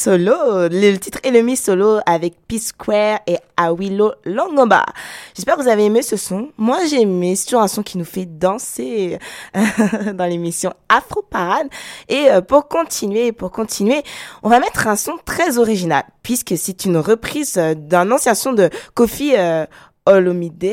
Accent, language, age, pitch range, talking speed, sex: French, French, 20-39, 180-235 Hz, 160 wpm, female